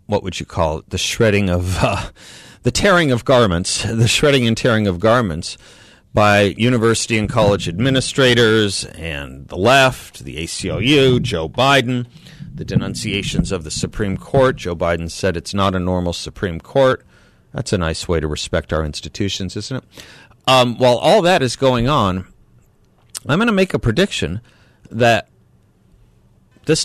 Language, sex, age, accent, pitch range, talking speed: English, male, 40-59, American, 95-130 Hz, 160 wpm